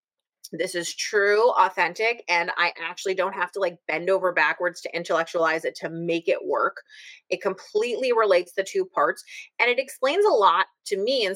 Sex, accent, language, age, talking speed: female, American, English, 30-49, 185 wpm